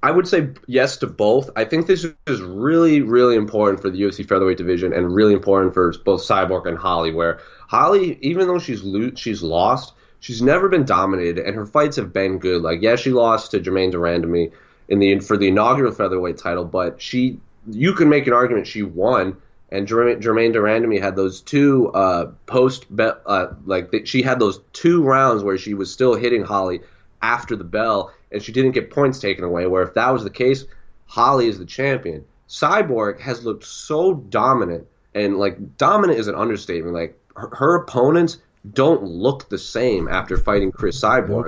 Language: English